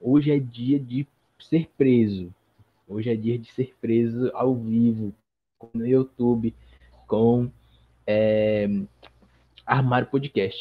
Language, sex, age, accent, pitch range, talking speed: Portuguese, male, 20-39, Brazilian, 115-140 Hz, 105 wpm